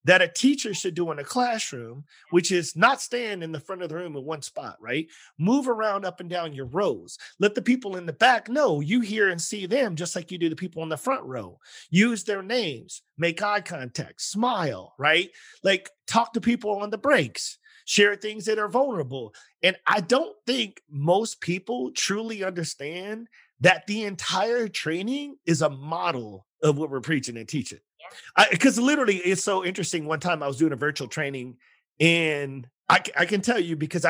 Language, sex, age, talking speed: English, male, 40-59, 200 wpm